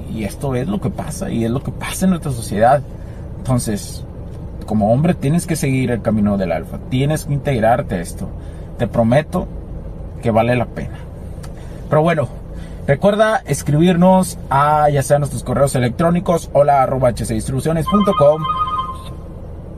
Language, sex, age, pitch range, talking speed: Spanish, male, 30-49, 110-150 Hz, 145 wpm